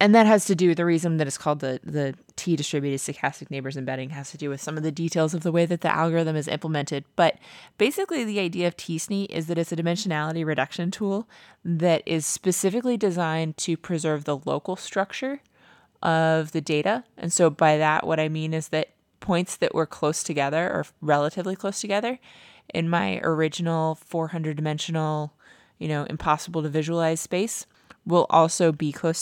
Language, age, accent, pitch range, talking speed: English, 20-39, American, 145-170 Hz, 180 wpm